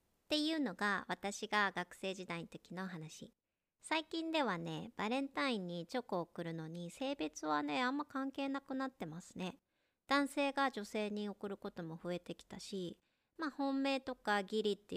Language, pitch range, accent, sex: Japanese, 175-245 Hz, native, male